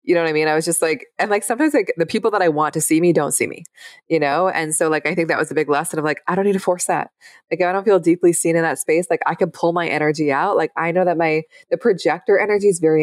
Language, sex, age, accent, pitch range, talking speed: English, female, 20-39, American, 145-185 Hz, 325 wpm